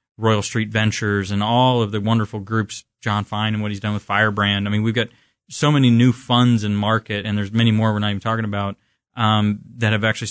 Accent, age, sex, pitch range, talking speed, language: American, 30-49, male, 105-120 Hz, 235 wpm, English